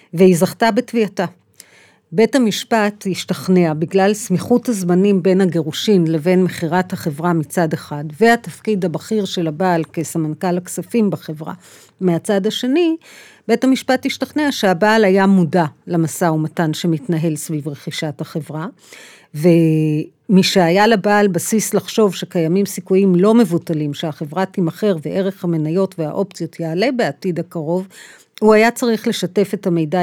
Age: 50-69